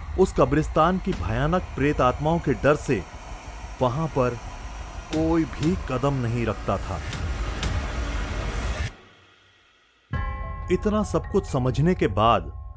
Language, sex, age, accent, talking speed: Hindi, male, 30-49, native, 110 wpm